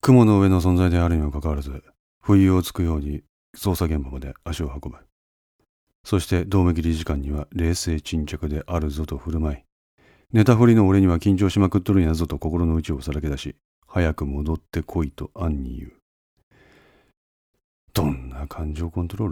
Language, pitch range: Japanese, 75-100 Hz